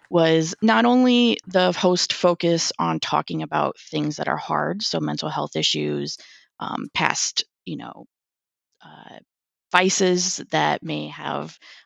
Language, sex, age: English, female, 20-39